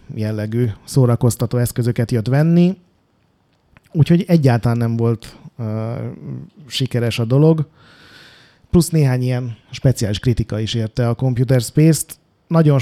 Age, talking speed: 30-49, 110 wpm